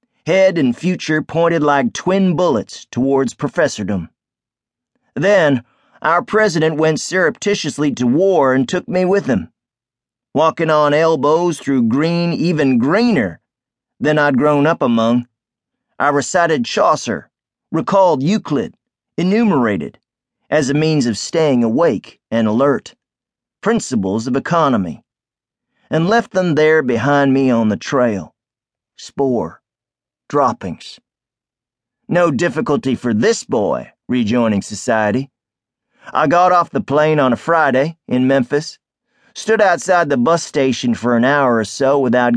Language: English